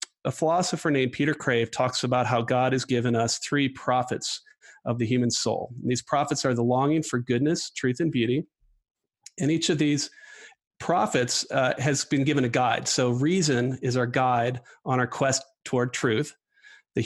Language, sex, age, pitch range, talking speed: English, male, 40-59, 125-155 Hz, 175 wpm